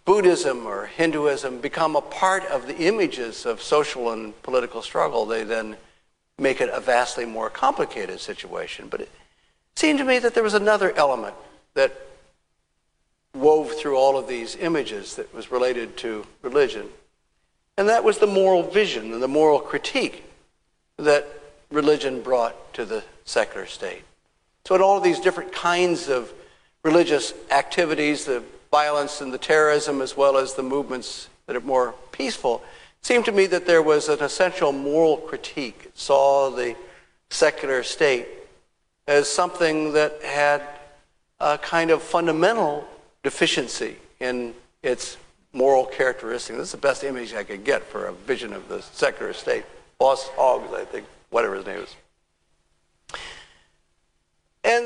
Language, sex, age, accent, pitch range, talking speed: English, male, 60-79, American, 135-220 Hz, 150 wpm